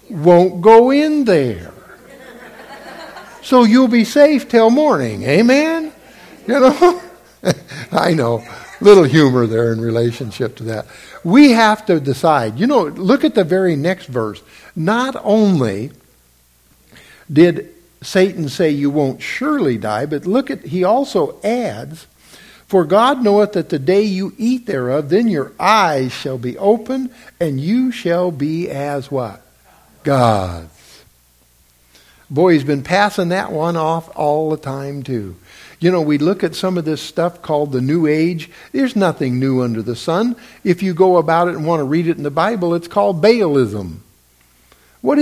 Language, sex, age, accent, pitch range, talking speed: English, male, 60-79, American, 120-205 Hz, 160 wpm